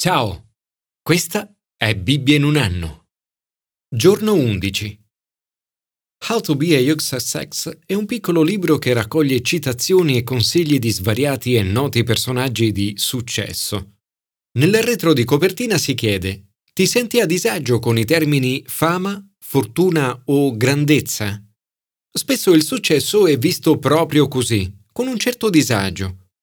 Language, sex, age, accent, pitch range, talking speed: Italian, male, 40-59, native, 110-165 Hz, 130 wpm